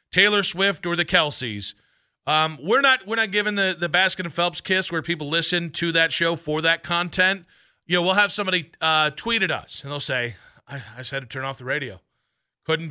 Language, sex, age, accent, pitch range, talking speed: English, male, 40-59, American, 155-195 Hz, 225 wpm